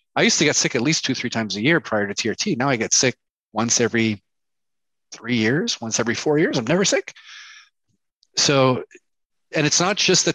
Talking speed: 210 wpm